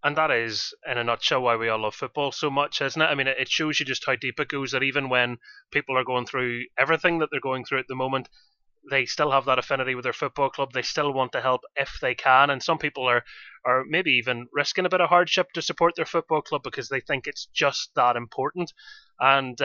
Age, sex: 30-49, male